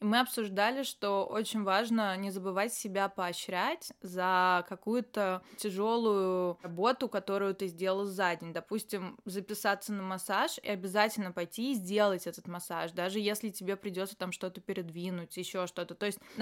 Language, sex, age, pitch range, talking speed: Russian, female, 20-39, 190-220 Hz, 145 wpm